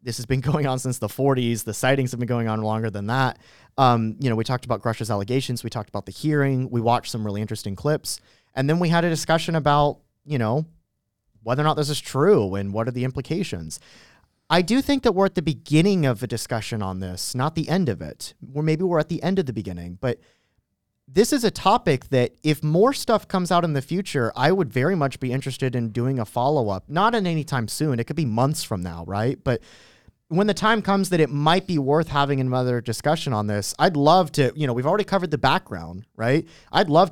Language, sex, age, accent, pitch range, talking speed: English, male, 30-49, American, 115-155 Hz, 235 wpm